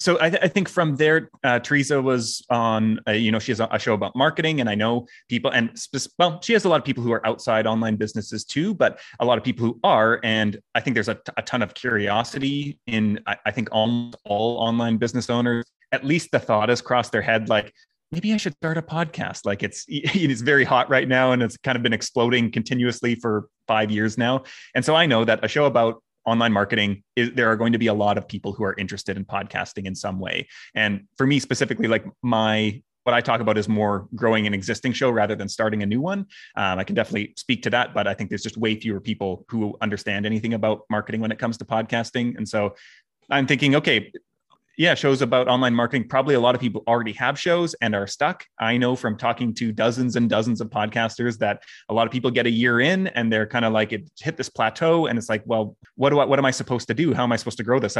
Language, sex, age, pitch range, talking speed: English, male, 30-49, 110-130 Hz, 245 wpm